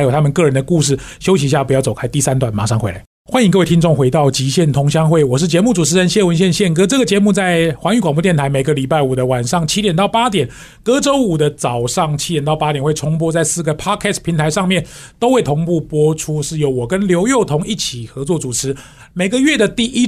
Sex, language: male, Chinese